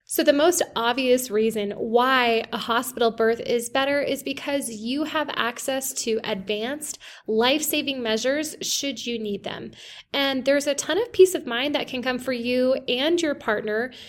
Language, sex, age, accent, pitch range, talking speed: English, female, 20-39, American, 225-270 Hz, 170 wpm